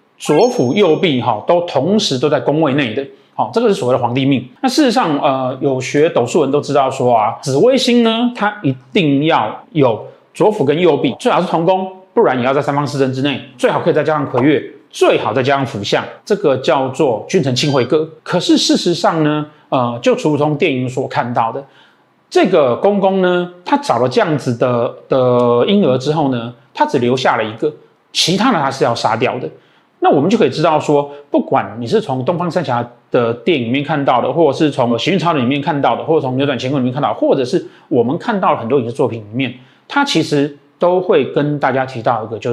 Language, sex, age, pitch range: Chinese, male, 30-49, 125-175 Hz